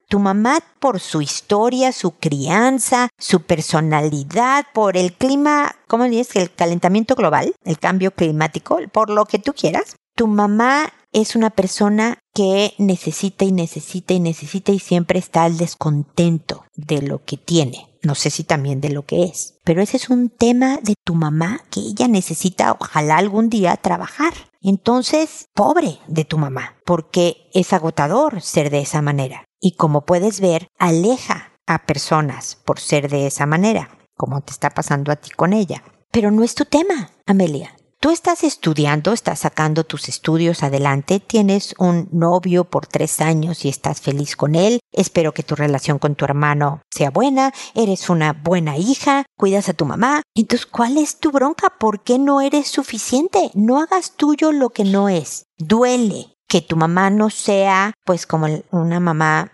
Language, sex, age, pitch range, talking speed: Spanish, female, 50-69, 155-225 Hz, 170 wpm